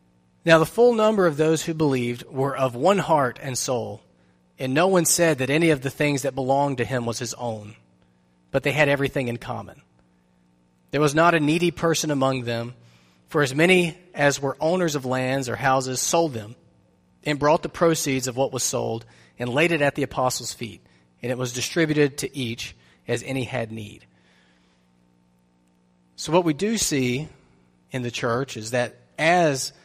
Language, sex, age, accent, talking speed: English, male, 30-49, American, 185 wpm